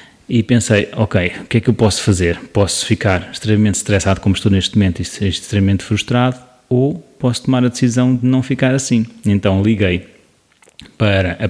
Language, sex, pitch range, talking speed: Portuguese, male, 100-130 Hz, 185 wpm